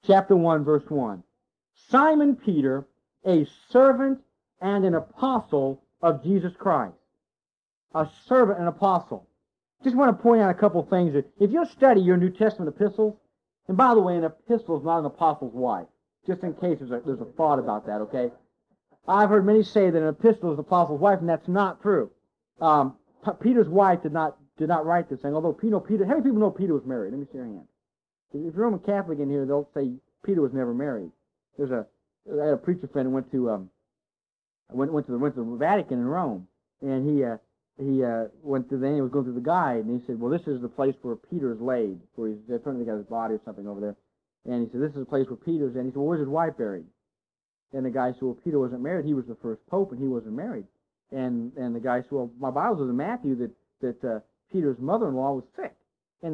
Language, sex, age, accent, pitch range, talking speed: English, male, 50-69, American, 130-190 Hz, 235 wpm